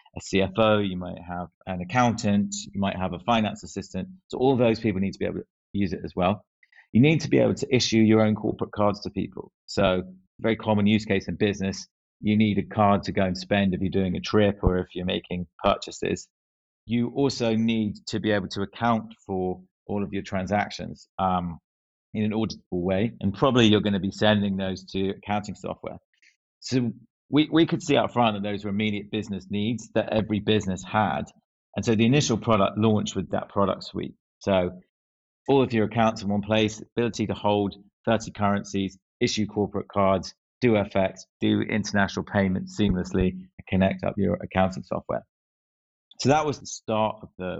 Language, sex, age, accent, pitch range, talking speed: English, male, 30-49, British, 95-110 Hz, 195 wpm